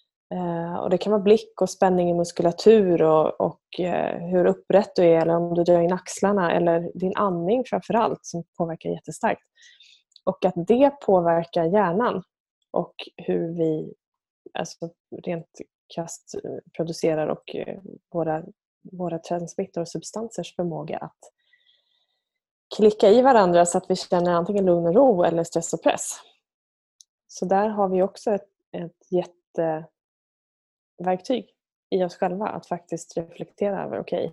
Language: Swedish